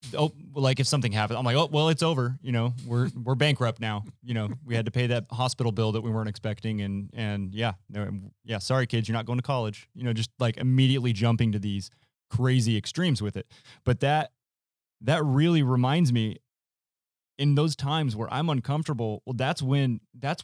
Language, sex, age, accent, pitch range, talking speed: English, male, 20-39, American, 105-130 Hz, 205 wpm